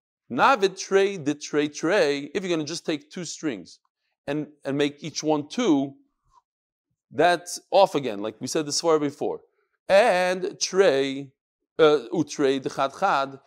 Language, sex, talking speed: English, male, 105 wpm